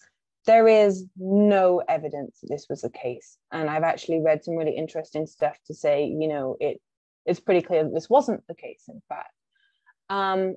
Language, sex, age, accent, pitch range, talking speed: Portuguese, female, 20-39, British, 165-225 Hz, 185 wpm